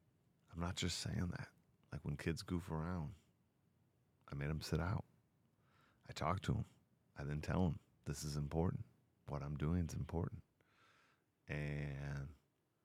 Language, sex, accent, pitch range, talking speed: English, male, American, 75-100 Hz, 145 wpm